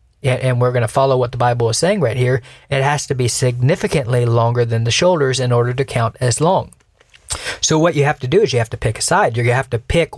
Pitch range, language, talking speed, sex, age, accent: 115-135 Hz, English, 260 wpm, male, 40-59, American